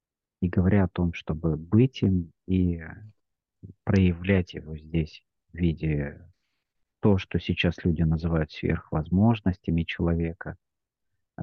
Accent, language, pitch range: native, Russian, 85-100 Hz